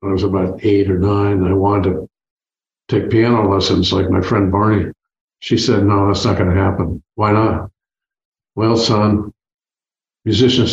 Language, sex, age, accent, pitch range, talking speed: English, male, 50-69, American, 100-115 Hz, 170 wpm